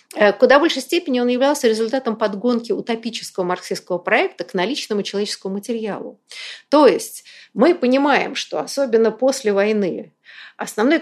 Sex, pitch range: female, 205-270 Hz